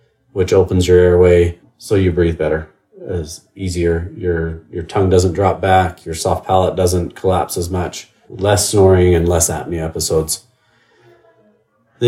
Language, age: English, 40-59